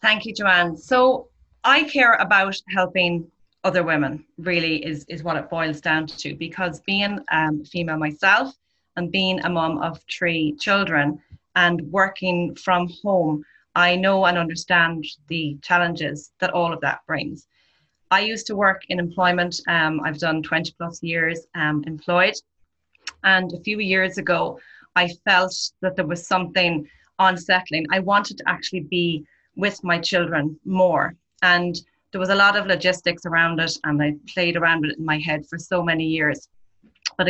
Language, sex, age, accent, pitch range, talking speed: English, female, 30-49, Irish, 160-185 Hz, 165 wpm